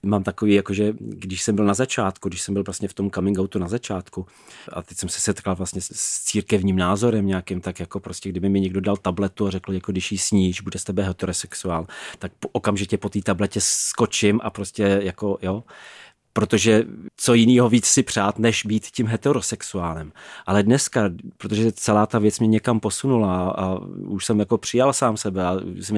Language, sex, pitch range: Czech, male, 95-110 Hz